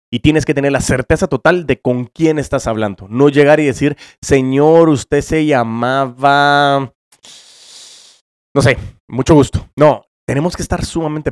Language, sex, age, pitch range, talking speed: Spanish, male, 30-49, 120-150 Hz, 155 wpm